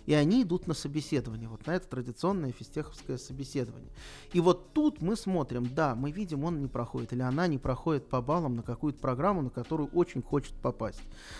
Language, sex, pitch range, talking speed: Russian, male, 130-170 Hz, 190 wpm